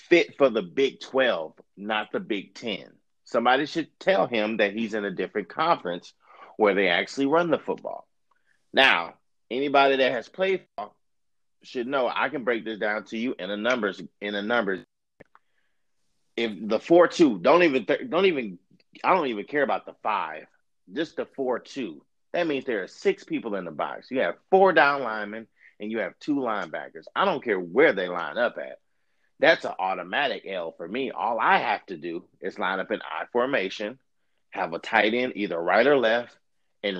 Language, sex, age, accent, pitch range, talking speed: English, male, 30-49, American, 105-140 Hz, 190 wpm